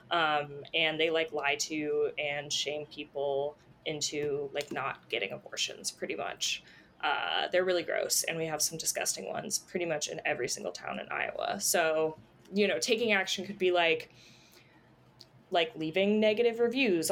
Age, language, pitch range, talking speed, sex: 20-39, English, 155-185 Hz, 160 wpm, female